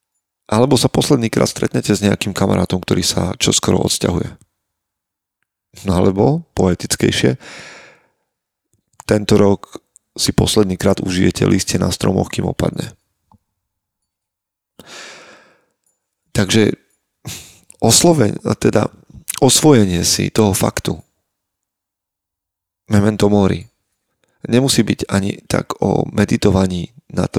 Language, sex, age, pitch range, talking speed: Slovak, male, 40-59, 90-105 Hz, 90 wpm